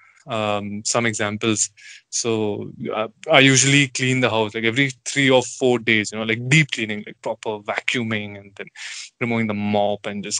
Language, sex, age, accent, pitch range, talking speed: English, male, 20-39, Indian, 120-150 Hz, 180 wpm